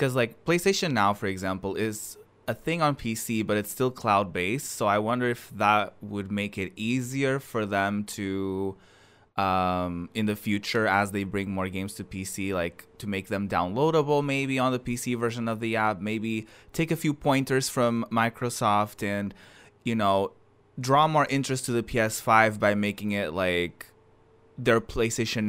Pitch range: 100-125 Hz